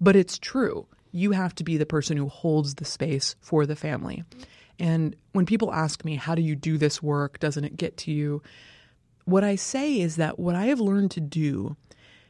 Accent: American